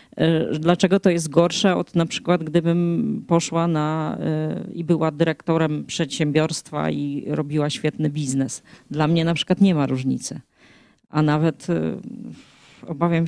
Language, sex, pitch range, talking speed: Polish, female, 160-200 Hz, 135 wpm